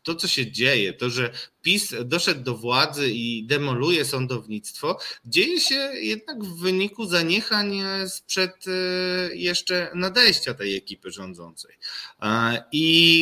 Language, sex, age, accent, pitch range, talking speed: Polish, male, 20-39, native, 115-165 Hz, 120 wpm